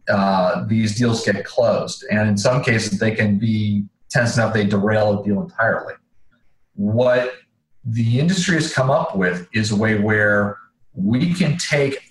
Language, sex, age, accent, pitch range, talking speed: English, male, 40-59, American, 105-130 Hz, 165 wpm